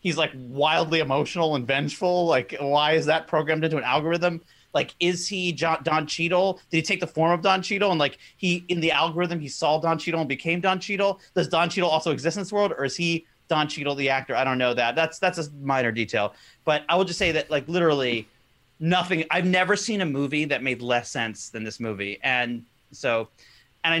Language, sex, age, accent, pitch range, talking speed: English, male, 30-49, American, 135-175 Hz, 225 wpm